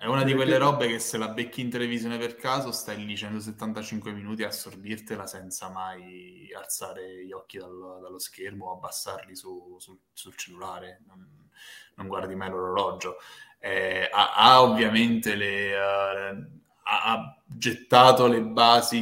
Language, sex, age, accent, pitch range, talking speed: Italian, male, 10-29, native, 95-120 Hz, 150 wpm